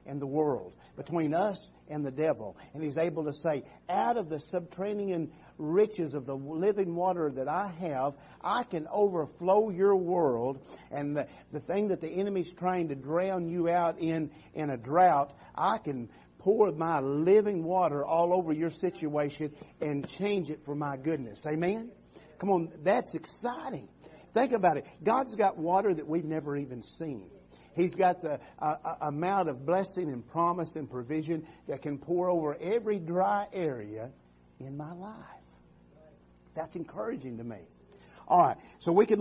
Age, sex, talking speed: 50-69, male, 165 wpm